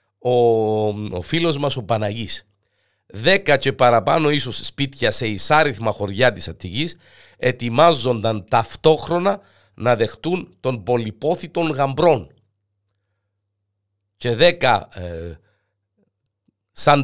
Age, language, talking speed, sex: 50-69, Greek, 90 wpm, male